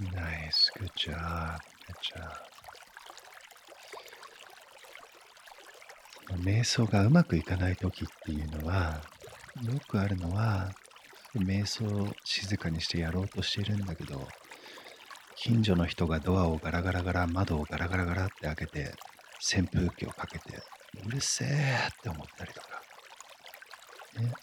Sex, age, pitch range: male, 50-69, 90-115 Hz